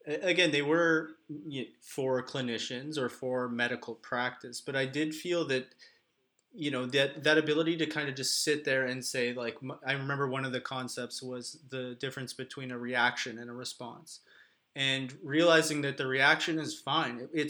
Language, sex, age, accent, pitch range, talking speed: English, male, 20-39, American, 130-155 Hz, 185 wpm